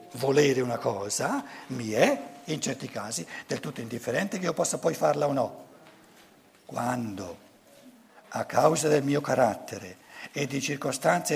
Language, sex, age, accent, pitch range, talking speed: Italian, male, 60-79, native, 110-170 Hz, 145 wpm